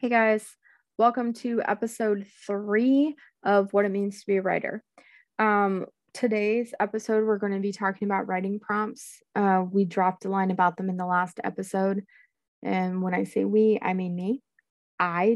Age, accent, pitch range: 20-39, American, 185-225 Hz